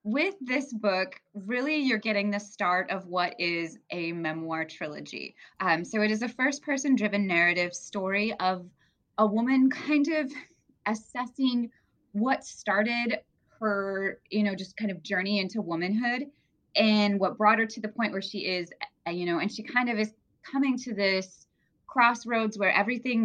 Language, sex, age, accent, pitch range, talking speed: English, female, 20-39, American, 170-220 Hz, 165 wpm